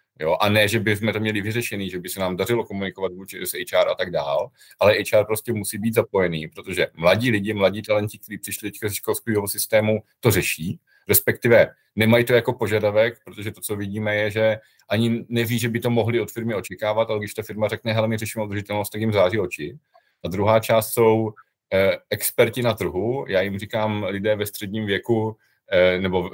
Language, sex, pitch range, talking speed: Czech, male, 100-115 Hz, 200 wpm